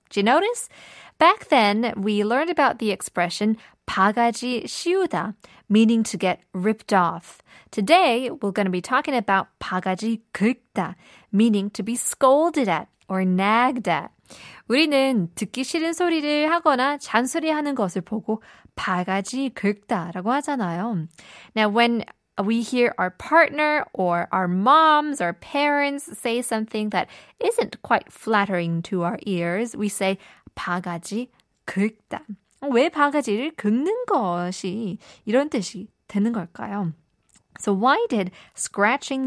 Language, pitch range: Korean, 195-270 Hz